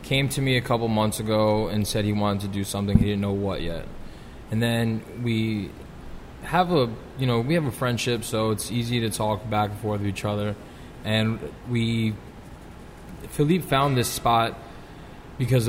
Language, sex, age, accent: English, male, 20-39, American